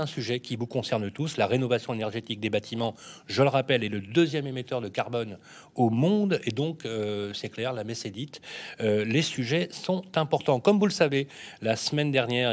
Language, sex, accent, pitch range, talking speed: French, male, French, 110-150 Hz, 205 wpm